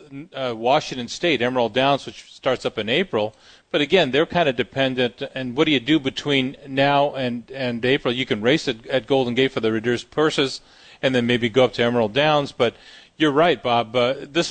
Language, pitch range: English, 125-145 Hz